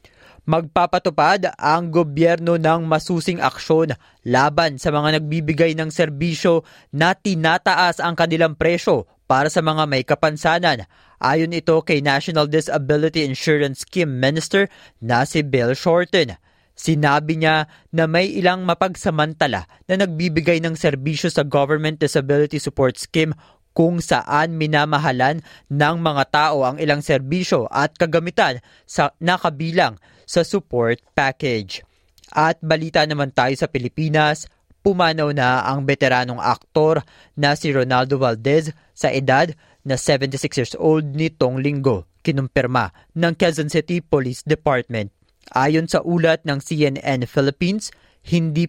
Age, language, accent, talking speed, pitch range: 20-39, Filipino, native, 125 wpm, 135-165 Hz